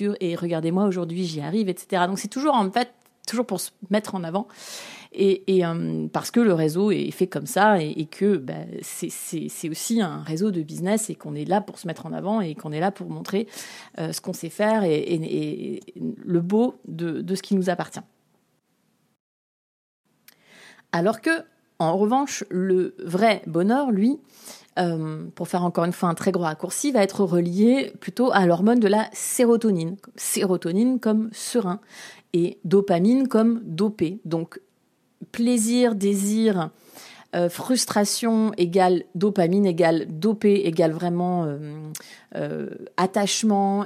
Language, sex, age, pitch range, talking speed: French, female, 40-59, 175-220 Hz, 160 wpm